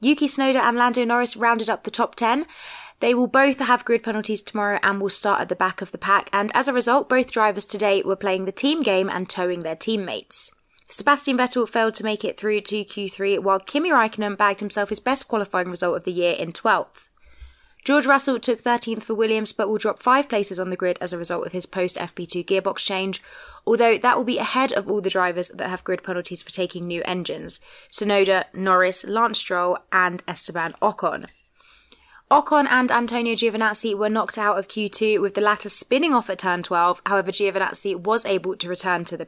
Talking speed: 210 wpm